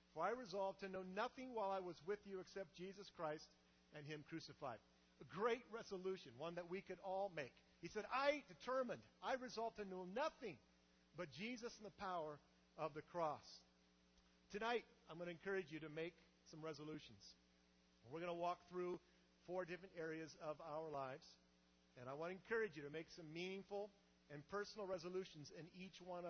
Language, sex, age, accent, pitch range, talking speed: English, male, 50-69, American, 130-185 Hz, 185 wpm